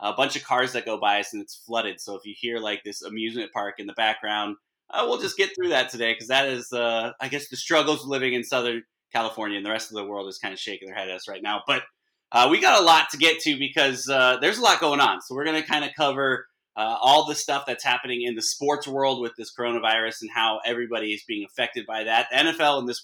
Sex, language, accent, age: male, English, American, 20-39